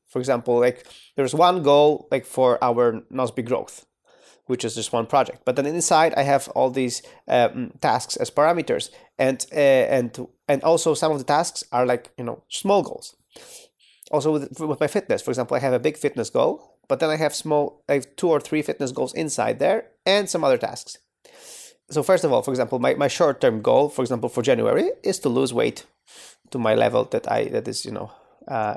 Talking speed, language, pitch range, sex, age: 215 wpm, English, 130-165 Hz, male, 30-49